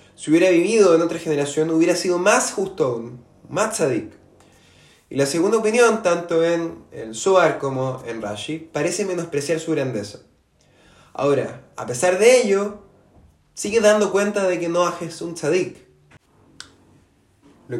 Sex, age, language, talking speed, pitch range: male, 20-39, Spanish, 140 wpm, 140-180 Hz